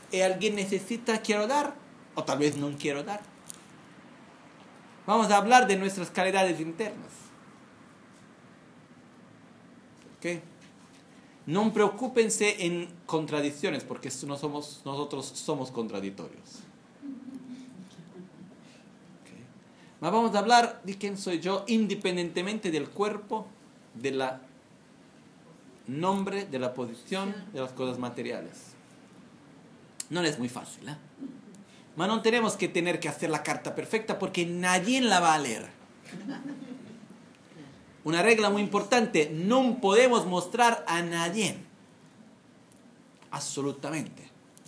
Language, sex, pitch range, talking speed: Italian, male, 150-220 Hz, 110 wpm